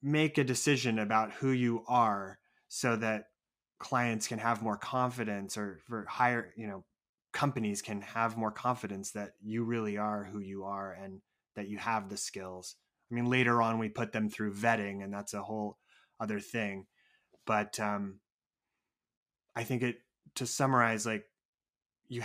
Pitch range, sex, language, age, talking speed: 105-125 Hz, male, English, 20-39, 165 wpm